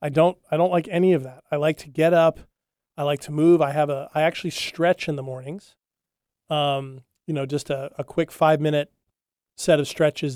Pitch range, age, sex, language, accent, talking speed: 140-160 Hz, 30-49, male, English, American, 220 wpm